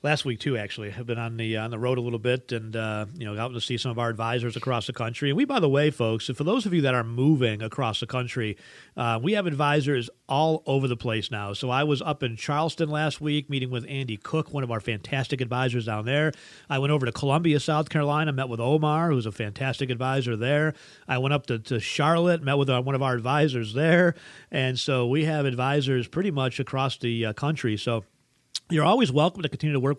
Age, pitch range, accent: 40-59, 120-155 Hz, American